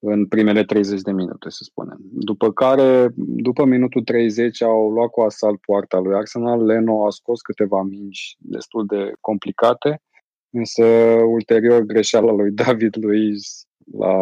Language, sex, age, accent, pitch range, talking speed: Romanian, male, 20-39, native, 105-125 Hz, 145 wpm